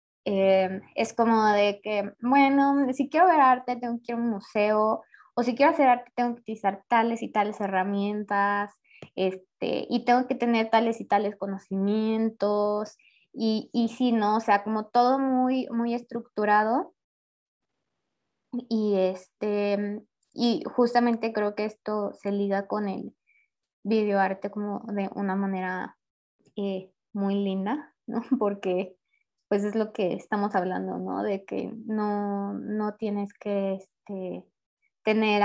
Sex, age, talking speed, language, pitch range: female, 20-39, 140 wpm, Spanish, 195-230 Hz